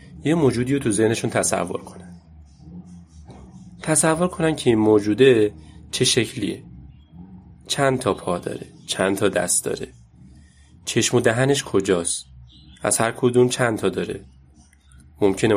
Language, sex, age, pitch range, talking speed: Persian, male, 30-49, 85-110 Hz, 125 wpm